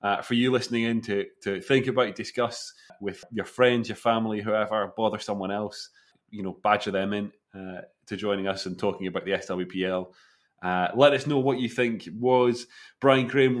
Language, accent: English, British